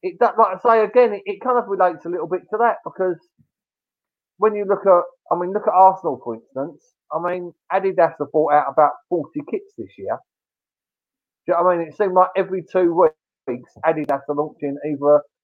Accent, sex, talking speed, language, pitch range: British, male, 215 wpm, English, 140-190 Hz